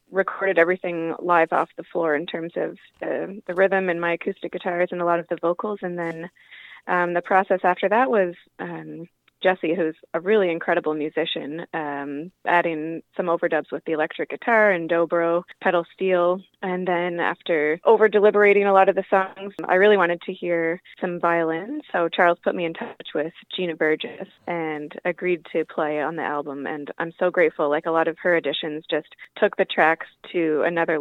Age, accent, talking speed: 20-39, American, 190 wpm